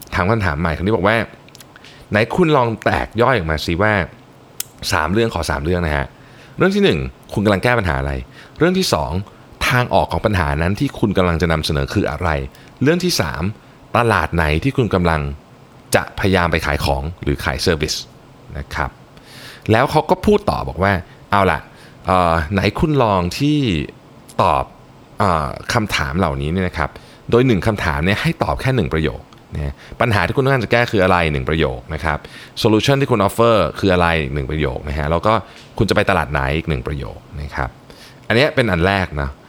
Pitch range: 80-125 Hz